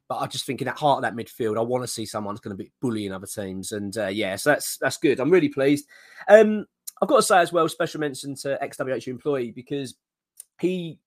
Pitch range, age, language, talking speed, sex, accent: 115-175 Hz, 20-39, English, 245 wpm, male, British